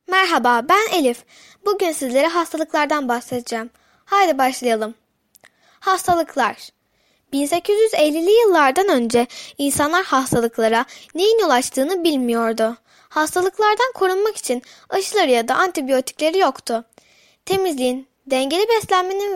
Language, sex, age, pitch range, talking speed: Turkish, female, 10-29, 255-375 Hz, 90 wpm